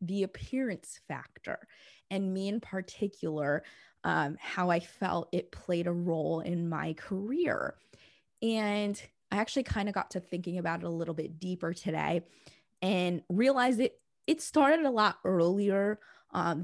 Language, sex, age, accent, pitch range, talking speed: English, female, 20-39, American, 175-220 Hz, 150 wpm